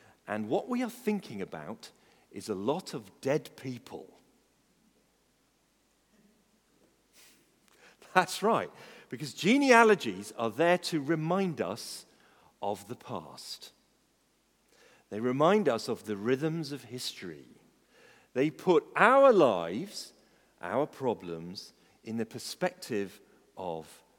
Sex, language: male, English